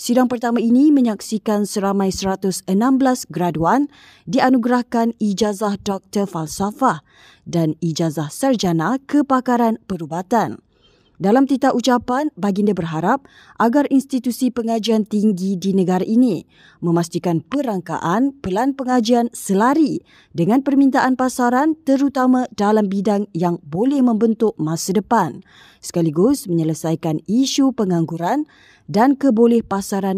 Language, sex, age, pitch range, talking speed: Malay, female, 20-39, 180-255 Hz, 100 wpm